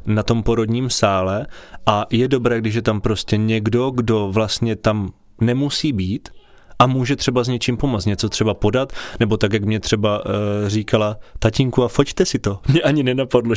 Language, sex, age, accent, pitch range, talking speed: Czech, male, 20-39, native, 105-125 Hz, 175 wpm